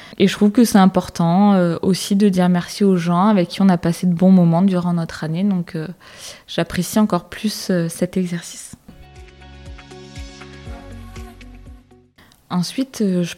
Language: French